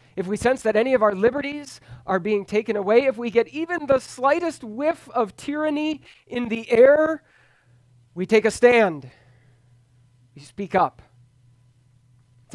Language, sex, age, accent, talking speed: English, male, 30-49, American, 155 wpm